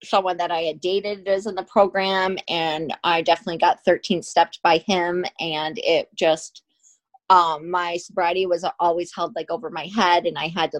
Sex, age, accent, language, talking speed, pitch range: female, 30-49, American, English, 190 wpm, 170-195 Hz